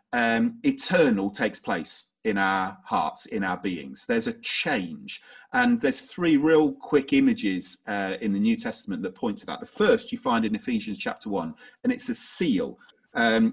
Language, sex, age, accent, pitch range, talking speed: English, male, 40-59, British, 150-250 Hz, 180 wpm